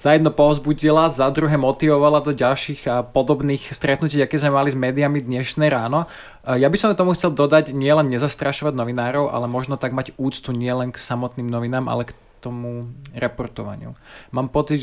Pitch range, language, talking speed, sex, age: 130-145 Hz, Slovak, 170 wpm, male, 20-39